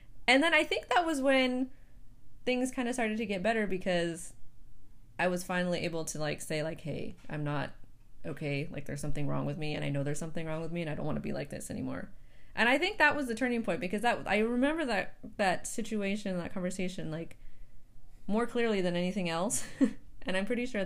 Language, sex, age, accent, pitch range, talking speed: English, female, 20-39, American, 155-210 Hz, 220 wpm